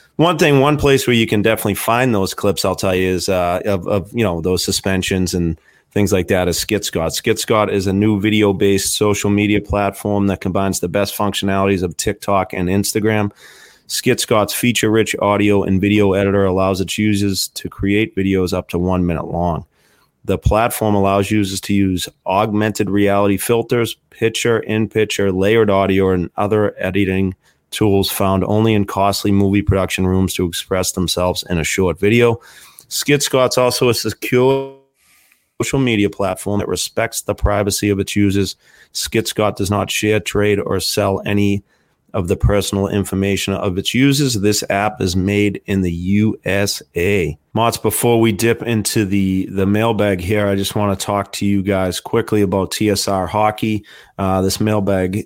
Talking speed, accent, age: 170 wpm, American, 30-49